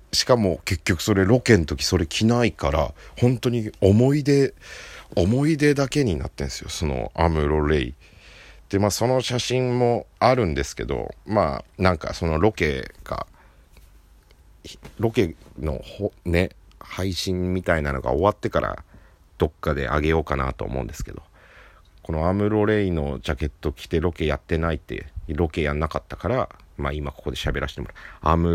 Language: Japanese